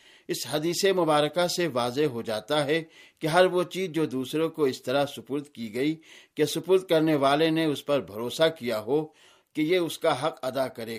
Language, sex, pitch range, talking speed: Urdu, male, 135-170 Hz, 200 wpm